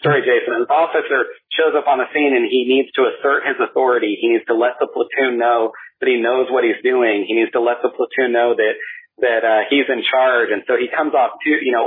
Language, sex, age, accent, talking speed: English, male, 40-59, American, 255 wpm